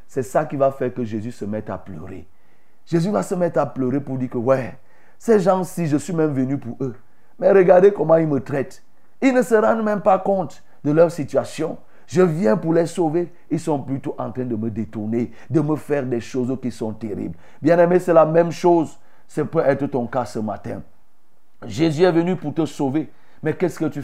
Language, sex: French, male